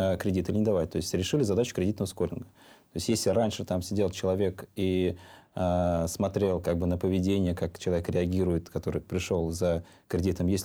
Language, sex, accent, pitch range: Russian, male, native, 90-110 Hz